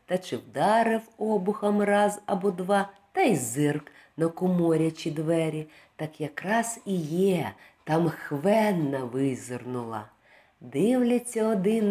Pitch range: 150-215 Hz